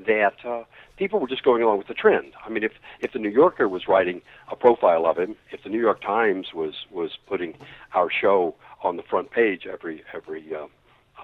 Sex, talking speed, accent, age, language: male, 215 wpm, American, 60-79, English